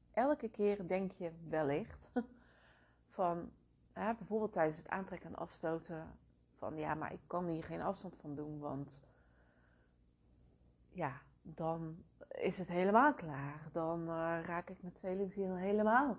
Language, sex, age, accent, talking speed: Dutch, female, 30-49, Dutch, 135 wpm